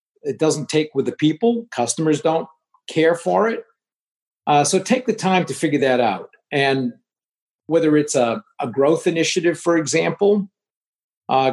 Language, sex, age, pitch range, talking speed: English, male, 50-69, 135-185 Hz, 155 wpm